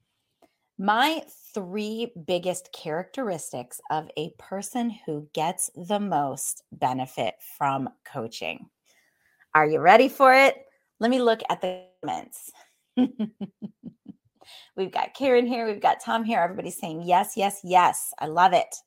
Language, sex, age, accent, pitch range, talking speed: English, female, 30-49, American, 165-235 Hz, 130 wpm